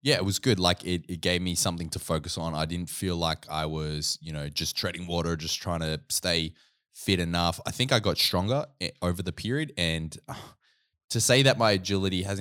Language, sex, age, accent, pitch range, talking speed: English, male, 20-39, Australian, 75-95 Hz, 220 wpm